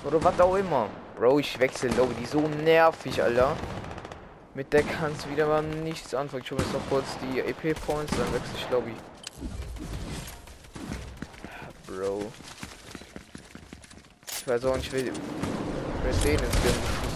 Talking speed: 140 wpm